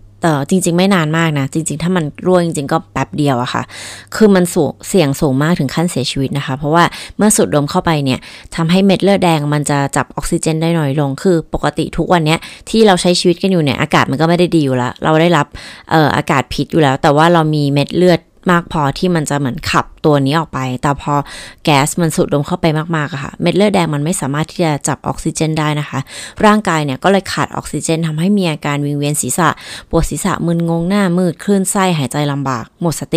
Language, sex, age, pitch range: Thai, female, 20-39, 145-180 Hz